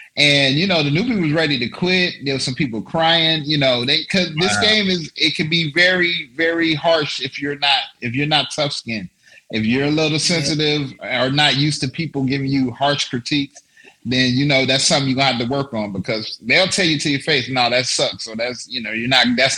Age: 30-49